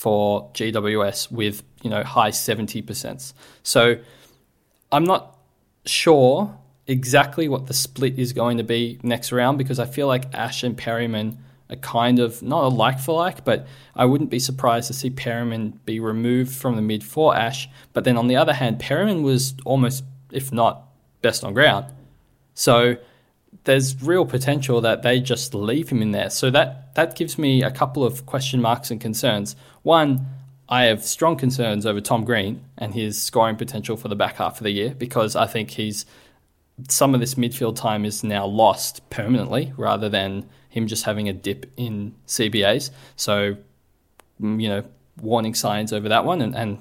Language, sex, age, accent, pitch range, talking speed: English, male, 20-39, Australian, 110-135 Hz, 180 wpm